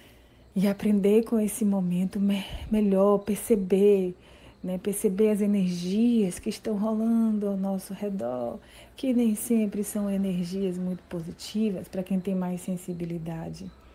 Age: 30-49